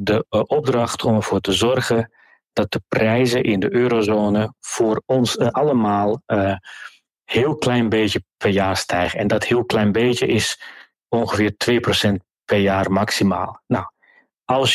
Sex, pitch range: male, 105-125 Hz